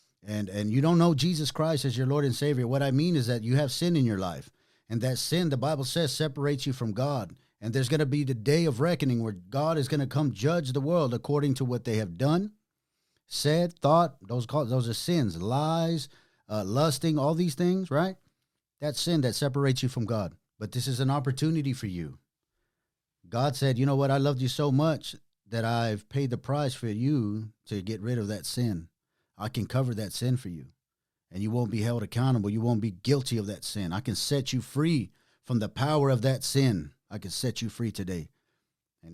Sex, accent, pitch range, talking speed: male, American, 110-145 Hz, 220 wpm